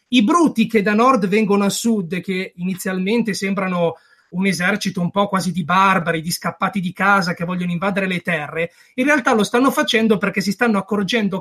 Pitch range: 185-235 Hz